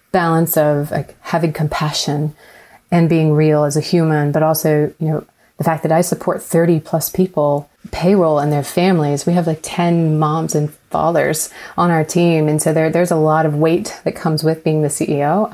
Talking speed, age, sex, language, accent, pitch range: 195 wpm, 30-49, female, English, American, 155-170 Hz